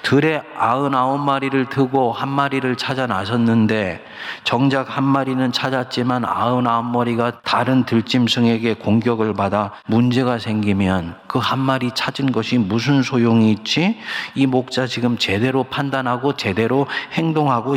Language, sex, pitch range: Korean, male, 115-145 Hz